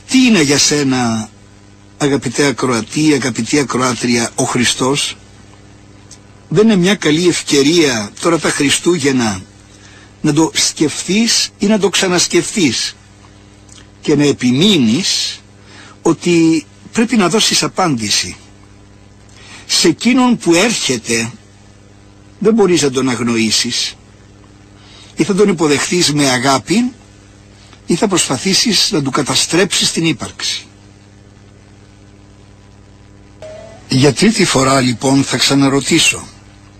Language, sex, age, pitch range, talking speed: Greek, male, 60-79, 100-145 Hz, 100 wpm